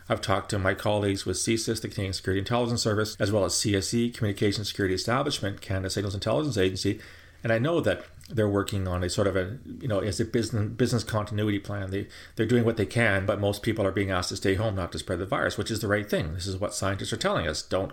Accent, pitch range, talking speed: American, 95-120 Hz, 250 wpm